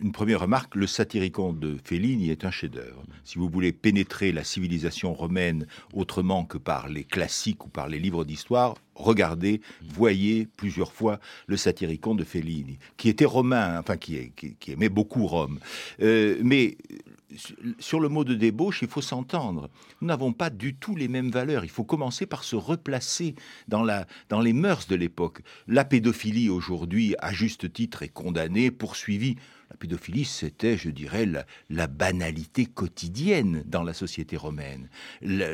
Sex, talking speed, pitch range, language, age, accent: male, 165 wpm, 85-125 Hz, French, 60-79, French